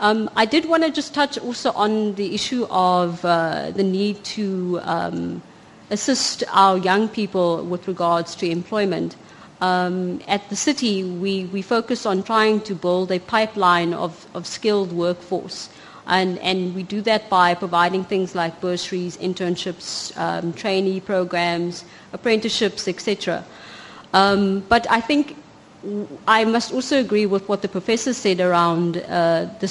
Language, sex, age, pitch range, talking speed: Malay, female, 30-49, 180-215 Hz, 150 wpm